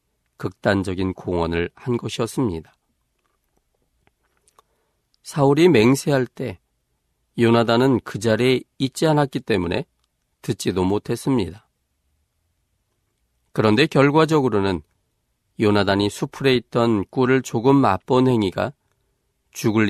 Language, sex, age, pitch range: Korean, male, 40-59, 70-120 Hz